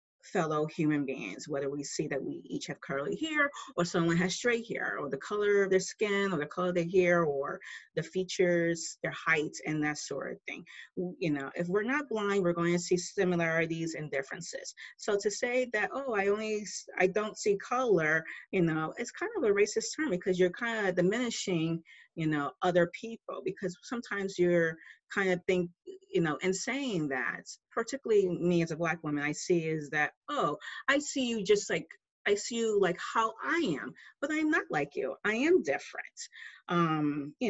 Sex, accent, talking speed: female, American, 200 wpm